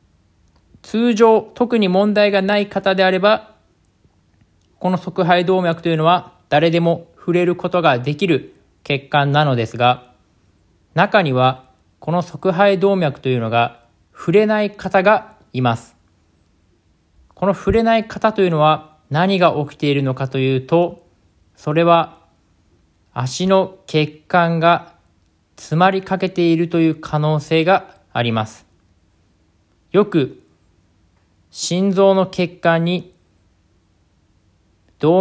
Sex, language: male, Japanese